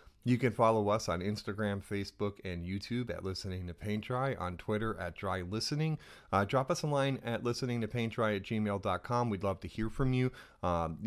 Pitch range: 90-115 Hz